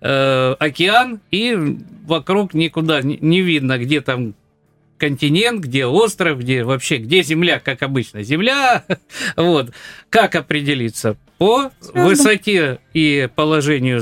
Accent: native